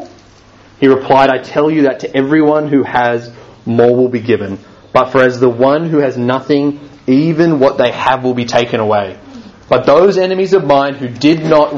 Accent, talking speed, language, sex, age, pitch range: Australian, 195 wpm, English, male, 30-49, 125-155 Hz